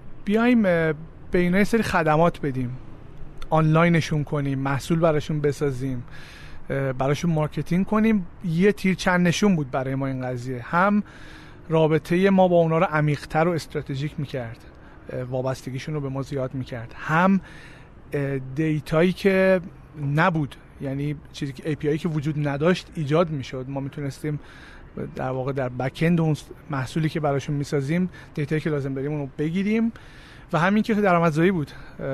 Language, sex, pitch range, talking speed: Persian, male, 135-175 Hz, 140 wpm